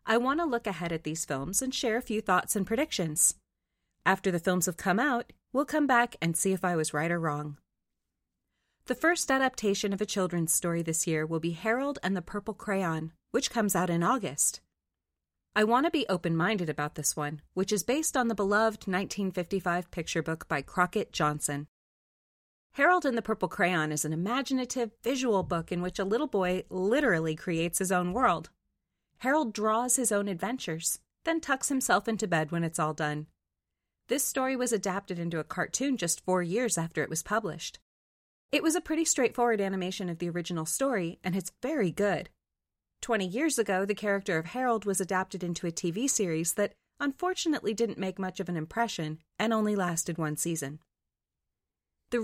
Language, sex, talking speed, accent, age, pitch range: English, female, 185 wpm, American, 30-49, 165-230 Hz